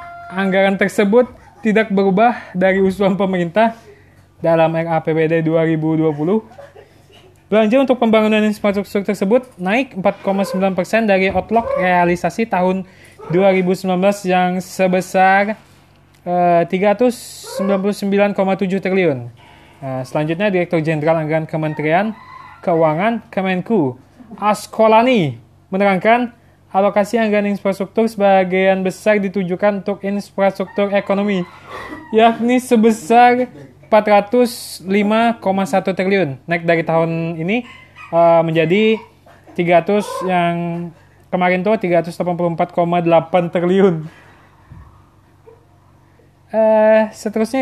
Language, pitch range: Indonesian, 170-215 Hz